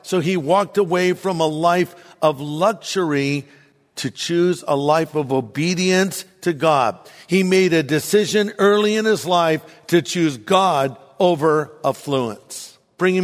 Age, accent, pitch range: 50-69, American, 150-200 Hz